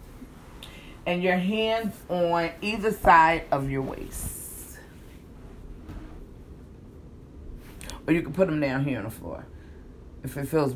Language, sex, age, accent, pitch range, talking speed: English, female, 40-59, American, 145-180 Hz, 125 wpm